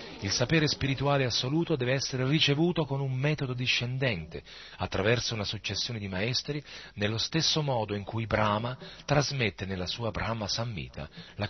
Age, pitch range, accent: 40-59, 105-165 Hz, native